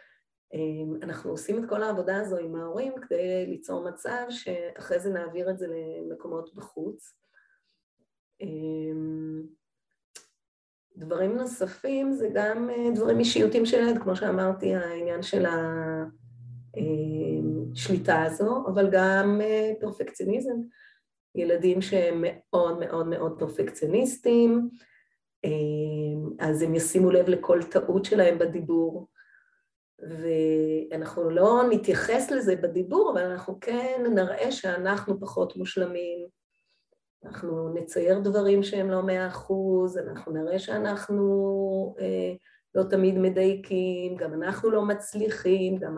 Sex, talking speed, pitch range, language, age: female, 105 wpm, 160-200 Hz, Hebrew, 30-49